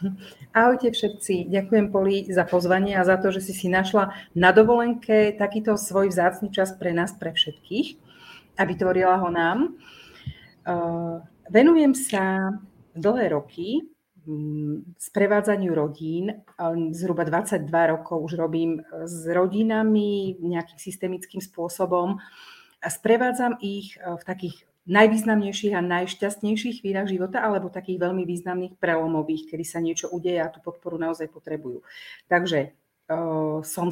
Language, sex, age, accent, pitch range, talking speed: Czech, female, 40-59, native, 165-205 Hz, 125 wpm